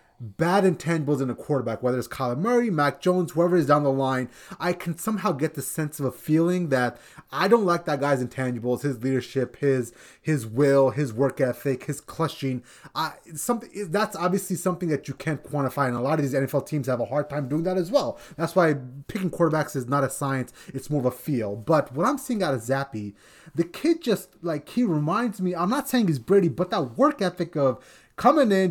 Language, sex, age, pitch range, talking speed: English, male, 30-49, 135-175 Hz, 220 wpm